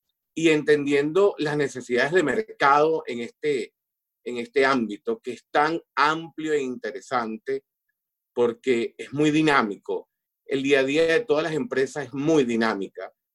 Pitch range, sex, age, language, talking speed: 140-220 Hz, male, 40-59, Spanish, 145 wpm